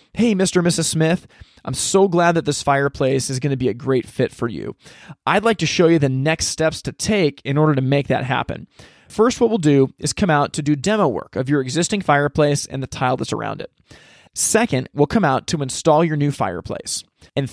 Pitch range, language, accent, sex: 135-175 Hz, English, American, male